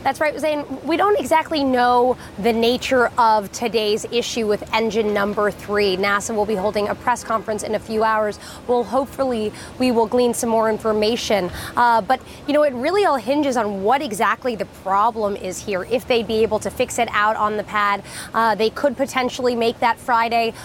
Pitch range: 215-265 Hz